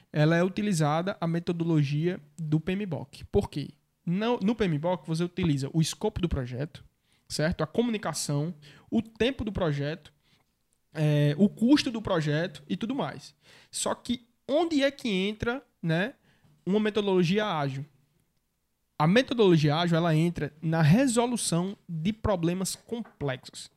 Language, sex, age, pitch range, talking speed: Portuguese, male, 20-39, 150-205 Hz, 130 wpm